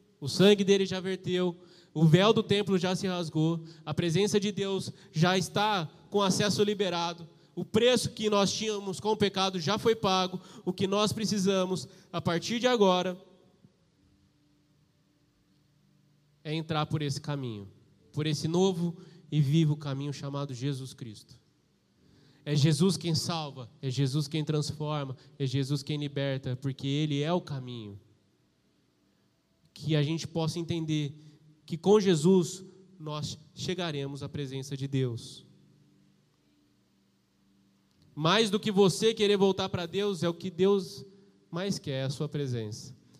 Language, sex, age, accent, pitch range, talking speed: Portuguese, male, 20-39, Brazilian, 145-195 Hz, 140 wpm